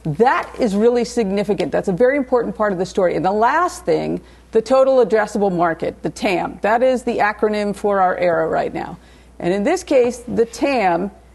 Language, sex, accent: English, female, American